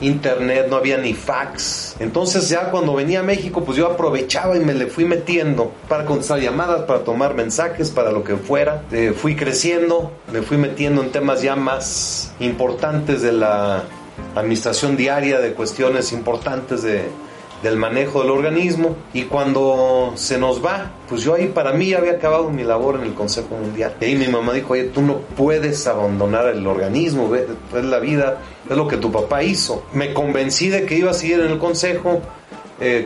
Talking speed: 185 wpm